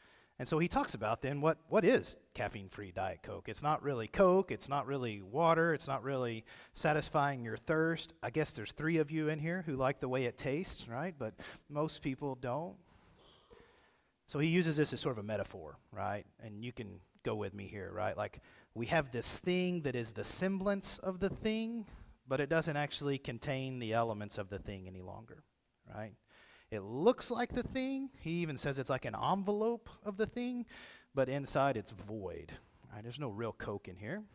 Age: 40-59